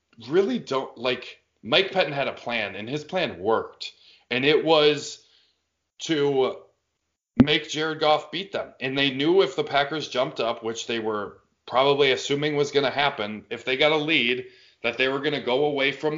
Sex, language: male, English